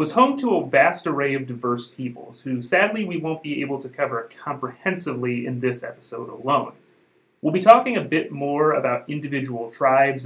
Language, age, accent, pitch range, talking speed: English, 30-49, American, 125-160 Hz, 180 wpm